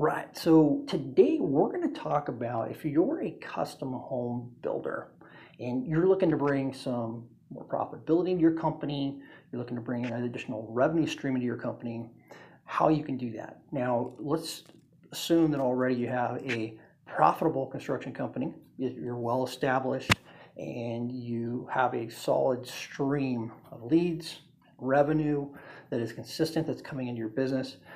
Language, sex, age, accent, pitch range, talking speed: English, male, 40-59, American, 120-155 Hz, 155 wpm